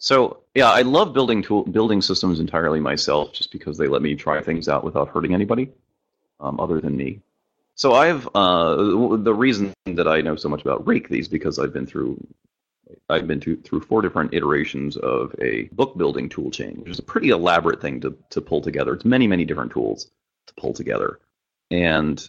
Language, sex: English, male